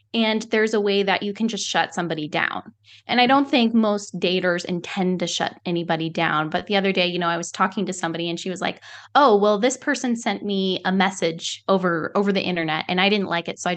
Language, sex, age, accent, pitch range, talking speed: English, female, 10-29, American, 170-215 Hz, 245 wpm